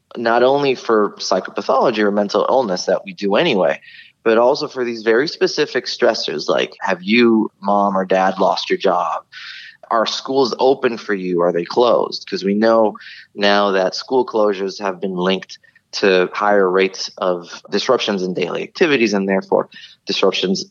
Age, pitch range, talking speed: 30-49, 95-120 Hz, 160 wpm